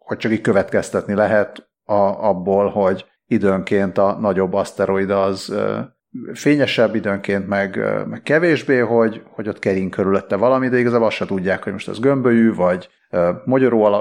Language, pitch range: Hungarian, 95-115 Hz